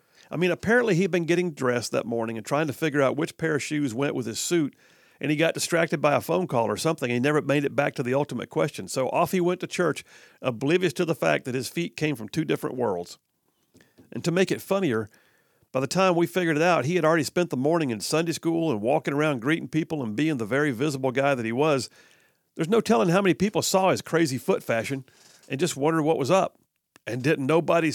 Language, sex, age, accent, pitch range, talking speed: English, male, 50-69, American, 130-170 Hz, 245 wpm